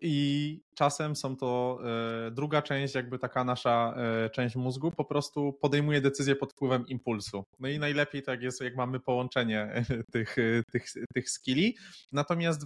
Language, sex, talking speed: Polish, male, 145 wpm